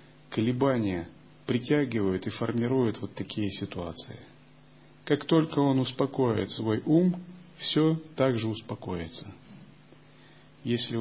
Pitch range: 100-125 Hz